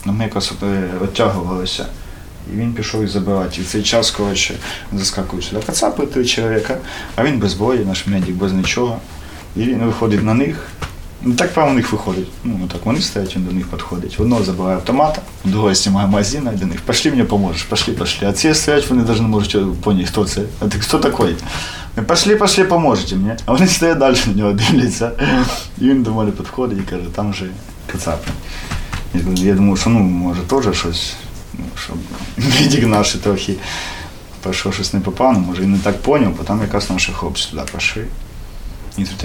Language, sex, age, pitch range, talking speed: Ukrainian, male, 20-39, 90-110 Hz, 190 wpm